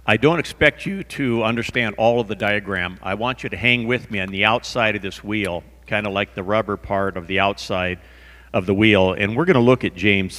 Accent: American